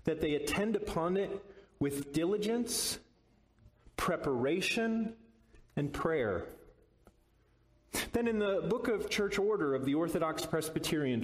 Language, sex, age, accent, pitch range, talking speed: English, male, 40-59, American, 145-195 Hz, 110 wpm